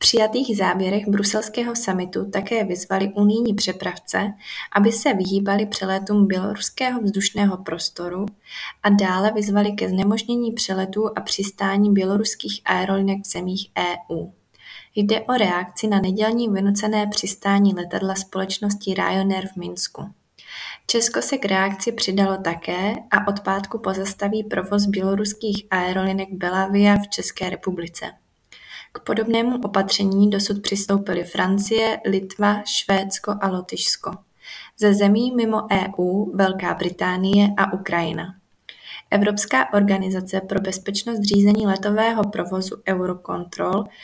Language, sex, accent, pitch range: Czech, female, native, 190-210 Hz